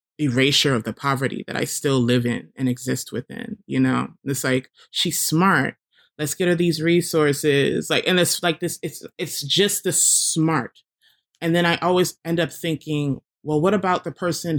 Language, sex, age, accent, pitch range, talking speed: English, male, 20-39, American, 125-155 Hz, 185 wpm